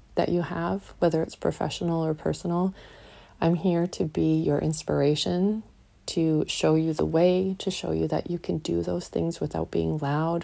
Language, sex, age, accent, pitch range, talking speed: English, female, 30-49, American, 140-170 Hz, 180 wpm